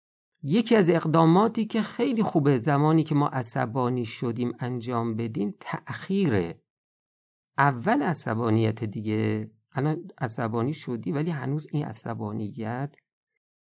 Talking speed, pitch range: 105 wpm, 115-160 Hz